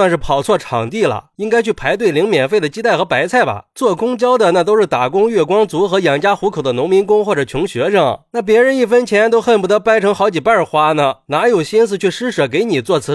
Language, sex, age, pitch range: Chinese, male, 20-39, 165-230 Hz